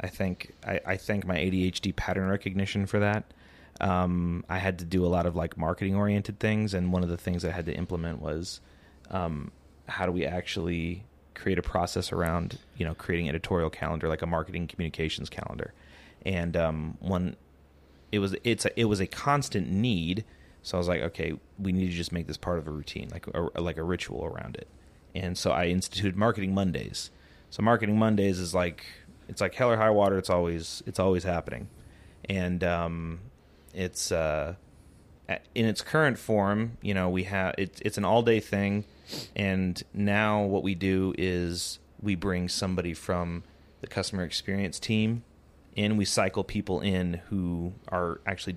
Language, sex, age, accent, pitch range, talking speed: English, male, 30-49, American, 85-100 Hz, 185 wpm